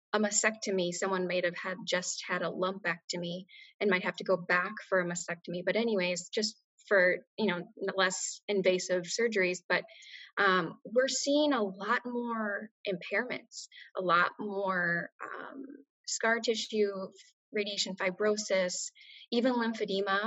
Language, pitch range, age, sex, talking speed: English, 185-235 Hz, 10-29, female, 135 wpm